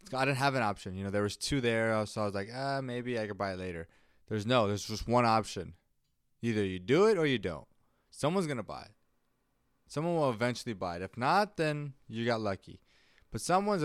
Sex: male